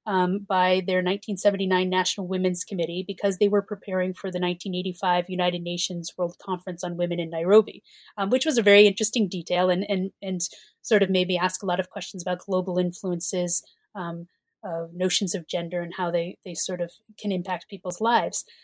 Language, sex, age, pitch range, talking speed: English, female, 30-49, 180-210 Hz, 185 wpm